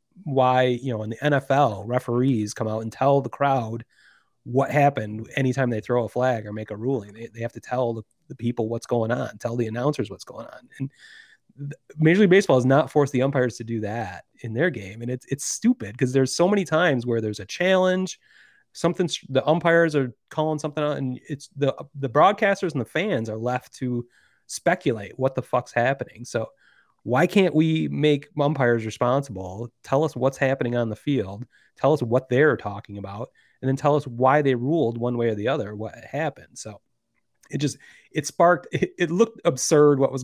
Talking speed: 205 wpm